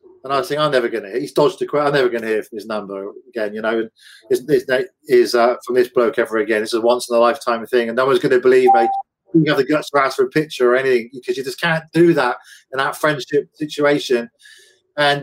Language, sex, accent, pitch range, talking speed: English, male, British, 145-235 Hz, 270 wpm